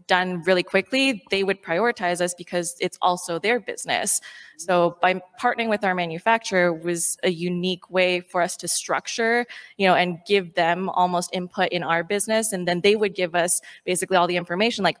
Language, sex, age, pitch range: English, female, 20-39, 180-215 Hz